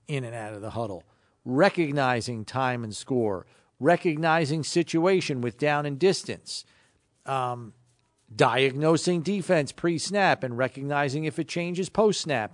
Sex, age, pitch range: male, 40-59, 125-185 Hz